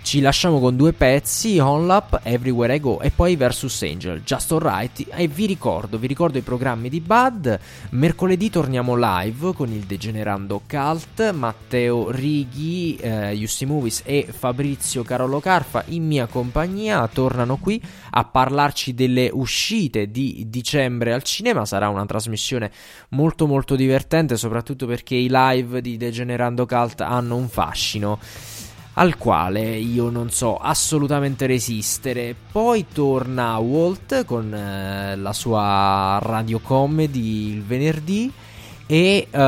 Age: 20-39